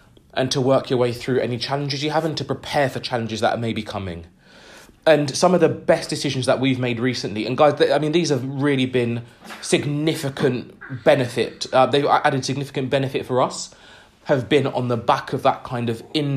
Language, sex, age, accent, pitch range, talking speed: English, male, 20-39, British, 125-160 Hz, 205 wpm